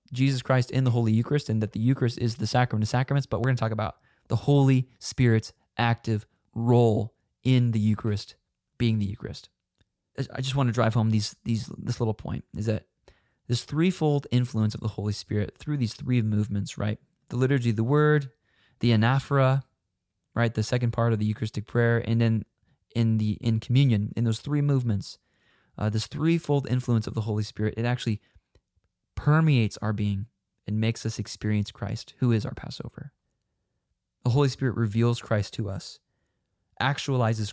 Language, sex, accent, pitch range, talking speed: English, male, American, 105-125 Hz, 180 wpm